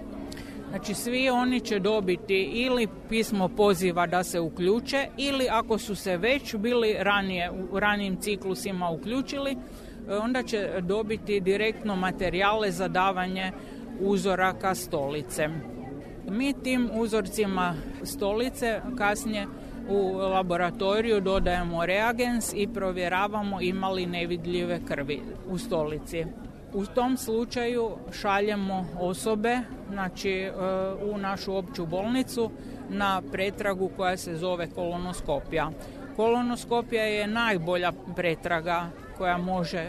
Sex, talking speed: female, 105 wpm